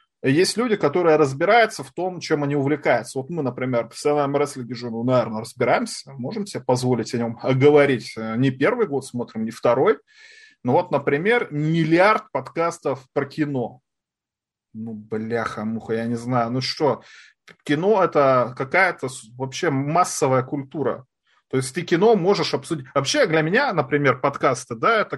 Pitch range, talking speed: 130-165 Hz, 155 wpm